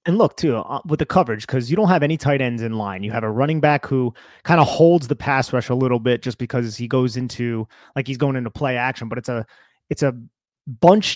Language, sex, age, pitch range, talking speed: English, male, 30-49, 125-155 Hz, 255 wpm